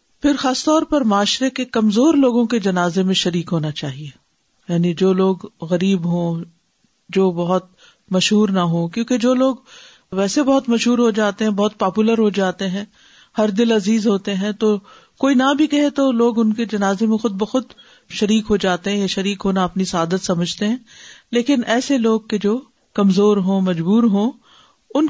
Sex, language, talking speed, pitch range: female, Urdu, 185 wpm, 185-235 Hz